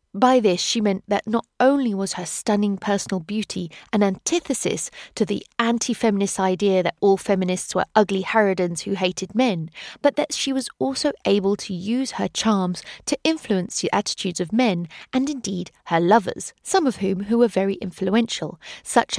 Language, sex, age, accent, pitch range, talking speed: English, female, 30-49, British, 185-240 Hz, 170 wpm